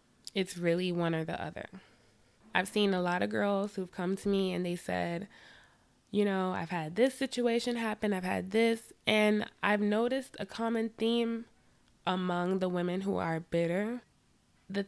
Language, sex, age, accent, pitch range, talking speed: English, female, 20-39, American, 175-210 Hz, 170 wpm